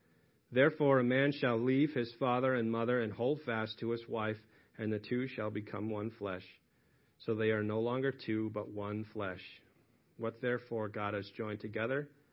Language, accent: English, American